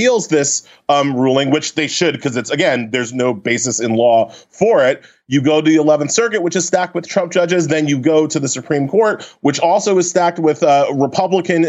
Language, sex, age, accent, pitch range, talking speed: English, male, 30-49, American, 145-185 Hz, 215 wpm